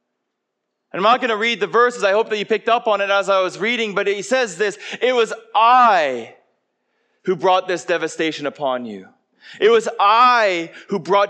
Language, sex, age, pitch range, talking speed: English, male, 30-49, 175-225 Hz, 195 wpm